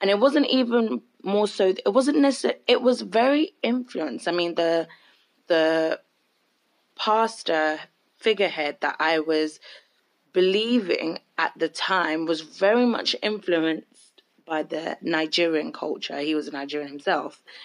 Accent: British